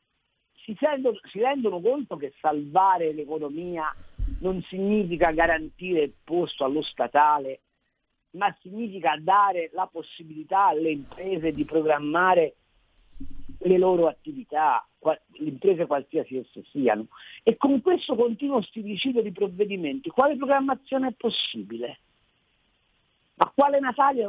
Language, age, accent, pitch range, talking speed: Italian, 50-69, native, 170-255 Hz, 115 wpm